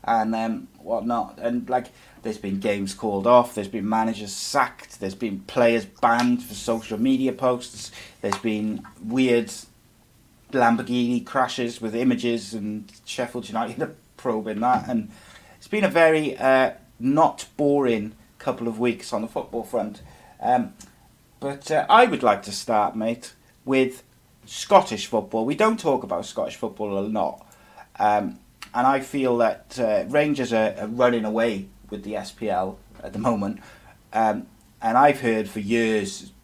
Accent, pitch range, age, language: British, 105-120 Hz, 30-49, English